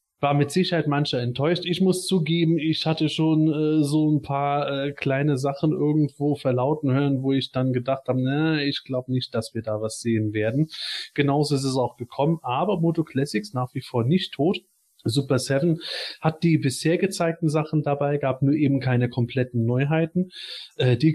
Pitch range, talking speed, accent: 130-165 Hz, 180 wpm, German